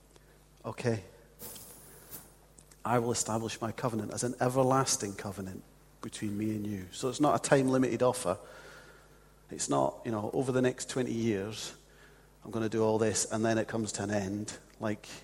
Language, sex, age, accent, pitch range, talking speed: English, male, 40-59, British, 105-125 Hz, 170 wpm